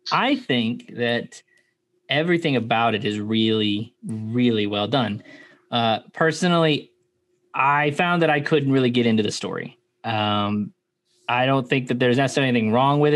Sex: male